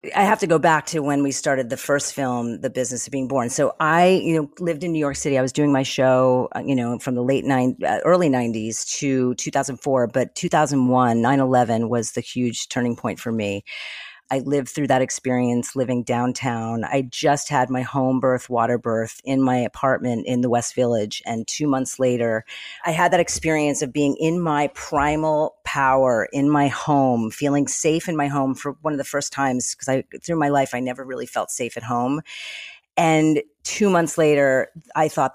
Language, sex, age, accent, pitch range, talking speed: English, female, 40-59, American, 125-150 Hz, 200 wpm